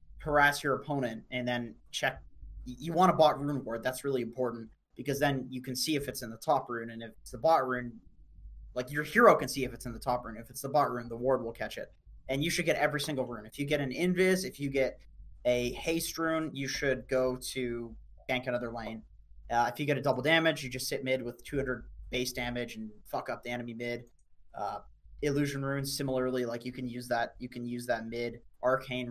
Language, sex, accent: English, male, American